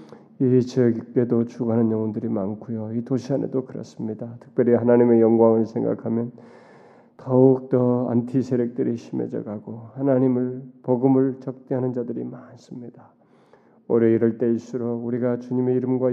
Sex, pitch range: male, 115-125 Hz